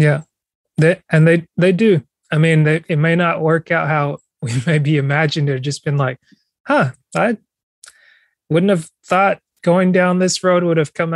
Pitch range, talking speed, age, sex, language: 145-165 Hz, 175 wpm, 20-39, male, English